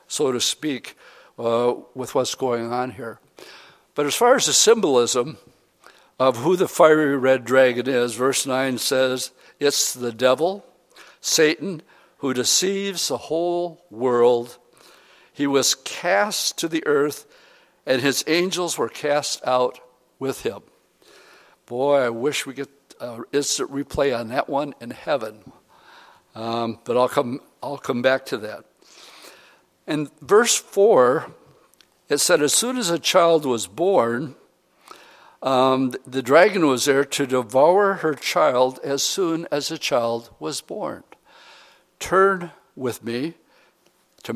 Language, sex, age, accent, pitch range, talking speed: English, male, 60-79, American, 125-170 Hz, 140 wpm